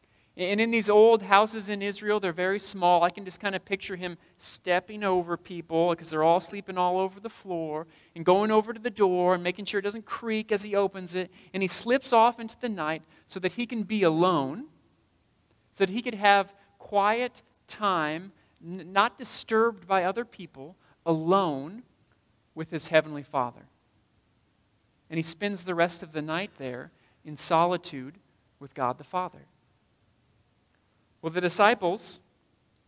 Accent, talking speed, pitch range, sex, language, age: American, 170 wpm, 155-205 Hz, male, English, 40-59